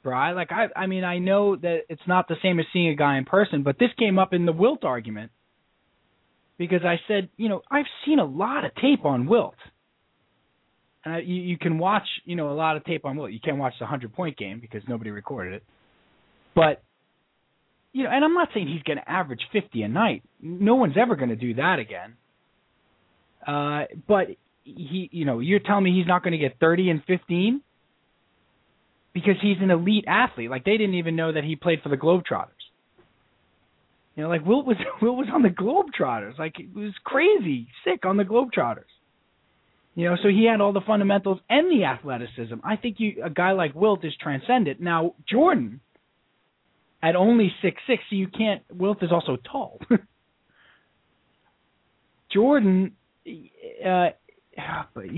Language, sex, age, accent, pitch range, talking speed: English, male, 20-39, American, 160-210 Hz, 185 wpm